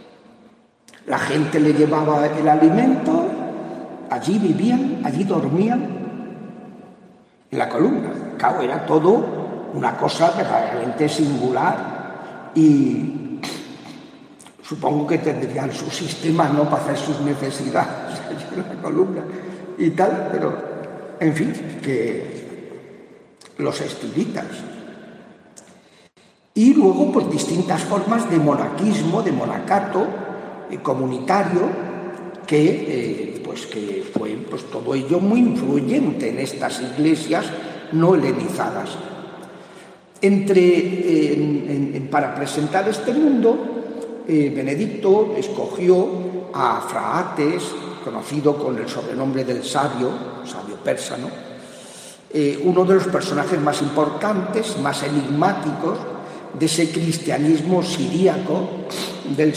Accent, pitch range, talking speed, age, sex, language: Spanish, 150-200 Hz, 105 wpm, 60-79, male, Spanish